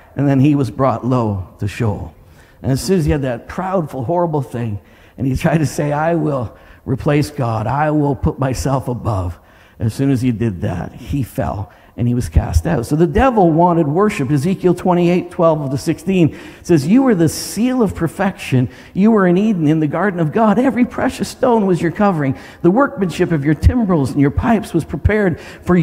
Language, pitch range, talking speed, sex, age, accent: English, 135-195 Hz, 205 wpm, male, 50-69, American